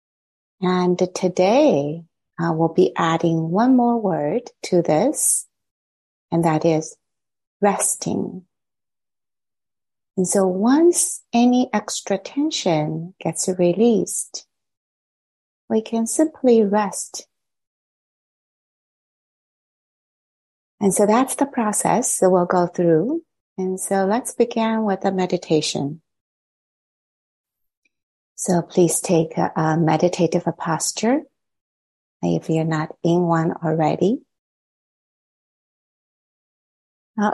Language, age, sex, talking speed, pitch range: English, 30-49, female, 95 wpm, 150-195 Hz